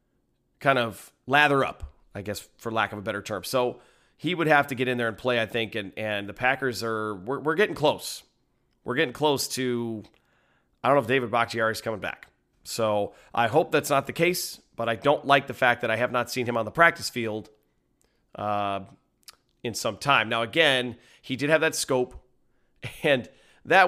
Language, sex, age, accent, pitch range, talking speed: English, male, 30-49, American, 110-135 Hz, 205 wpm